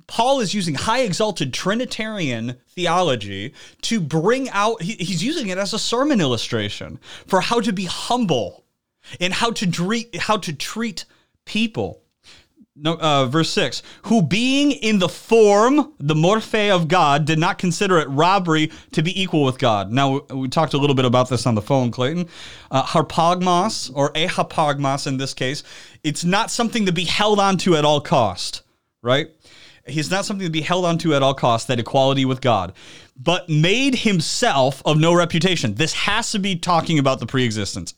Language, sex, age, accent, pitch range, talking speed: English, male, 30-49, American, 140-210 Hz, 175 wpm